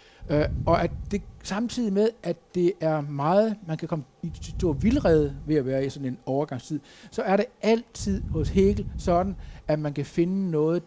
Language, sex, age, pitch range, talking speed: Danish, male, 60-79, 135-175 Hz, 195 wpm